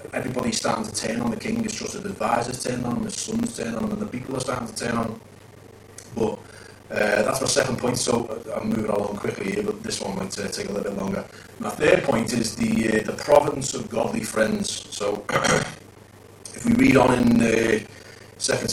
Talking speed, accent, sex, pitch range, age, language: 205 wpm, British, male, 110-125 Hz, 30-49, English